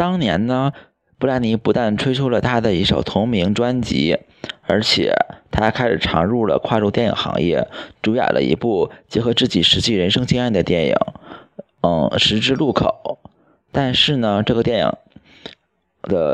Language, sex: Chinese, male